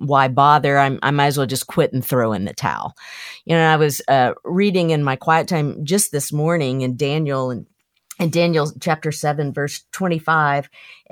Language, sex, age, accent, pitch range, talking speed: English, female, 50-69, American, 140-170 Hz, 200 wpm